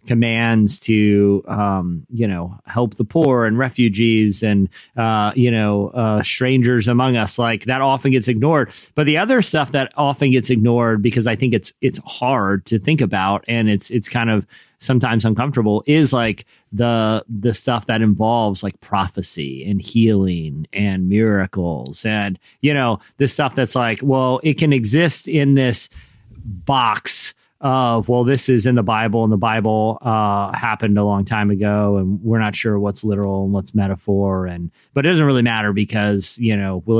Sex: male